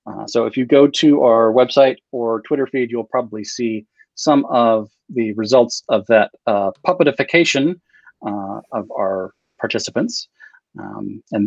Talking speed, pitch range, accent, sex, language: 145 wpm, 110-145 Hz, American, male, English